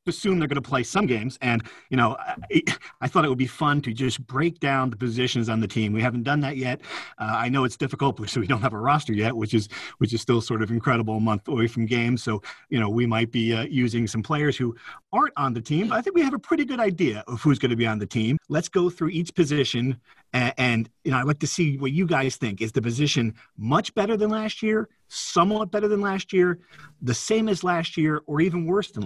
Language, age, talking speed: English, 40-59, 260 wpm